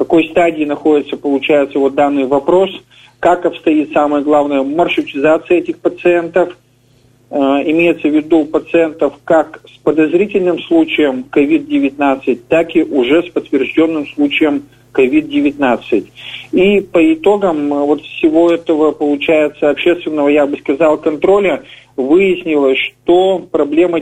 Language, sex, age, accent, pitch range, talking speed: Russian, male, 40-59, native, 145-185 Hz, 115 wpm